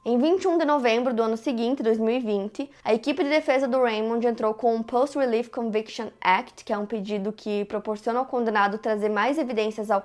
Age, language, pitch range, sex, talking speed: 20-39, Portuguese, 215-265 Hz, female, 195 wpm